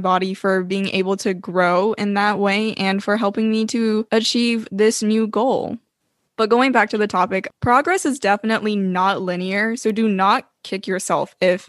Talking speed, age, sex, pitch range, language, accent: 180 wpm, 10-29, female, 185-215 Hz, English, American